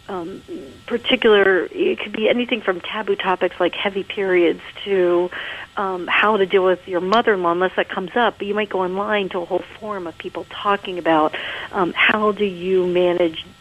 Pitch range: 175-225 Hz